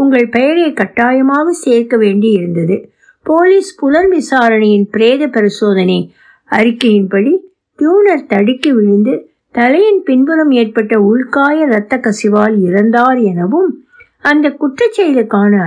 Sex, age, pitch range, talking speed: female, 60-79, 210-290 Hz, 90 wpm